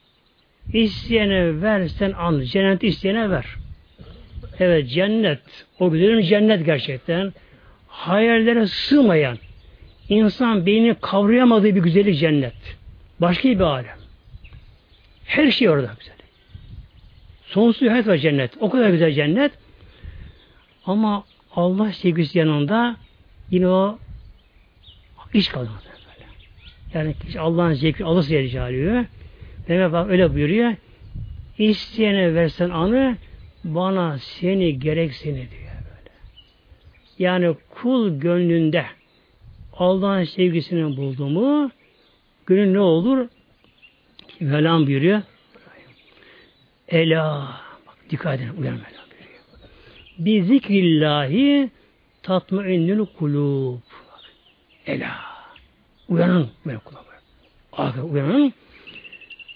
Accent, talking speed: native, 85 wpm